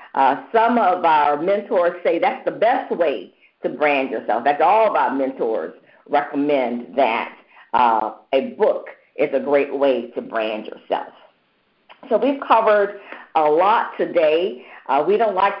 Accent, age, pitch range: American, 50-69, 175-255 Hz